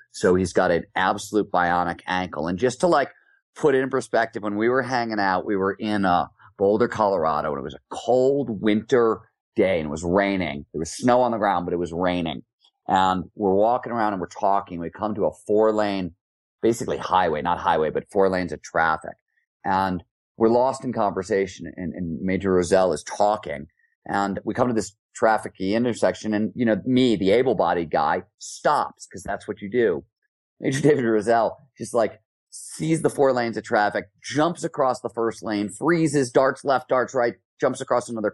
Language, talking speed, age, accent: English, 195 wpm, 30-49, American